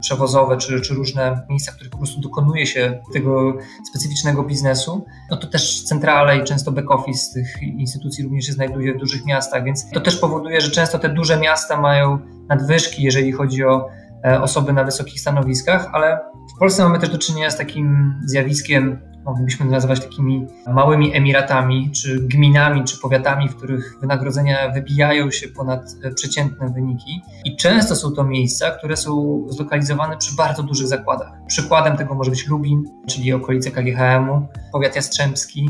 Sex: male